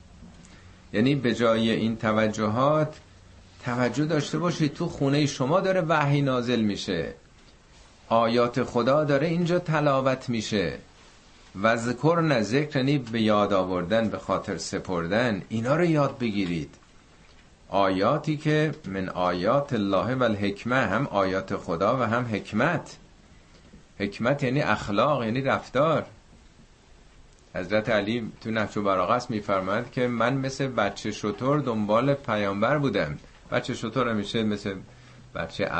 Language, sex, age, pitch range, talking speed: Persian, male, 50-69, 95-130 Hz, 115 wpm